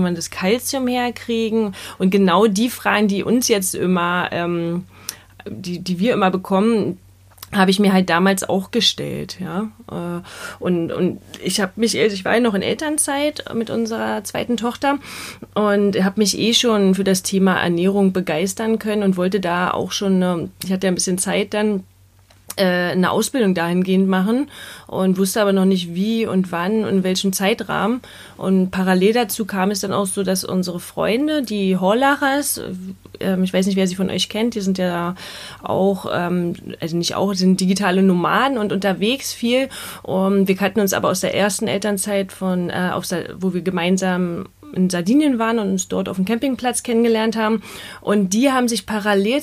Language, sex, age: German, female, 30-49